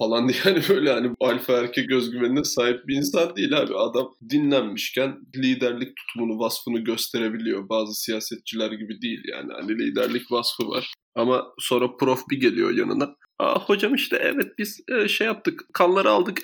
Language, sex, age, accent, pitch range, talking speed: Turkish, male, 20-39, native, 115-165 Hz, 160 wpm